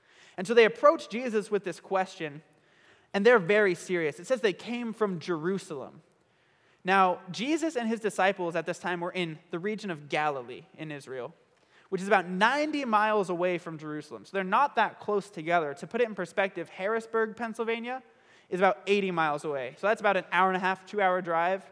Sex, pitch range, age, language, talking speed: male, 175-230 Hz, 20-39, English, 195 wpm